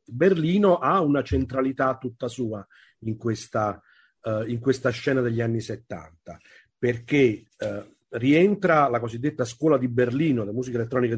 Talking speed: 140 wpm